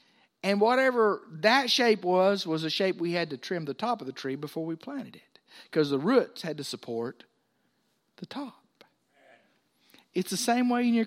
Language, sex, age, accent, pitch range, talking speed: English, male, 50-69, American, 155-215 Hz, 190 wpm